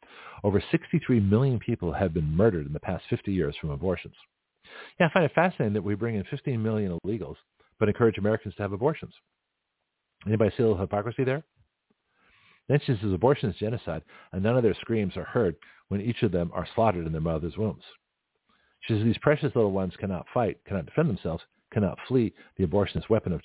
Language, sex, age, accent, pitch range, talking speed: English, male, 50-69, American, 85-110 Hz, 200 wpm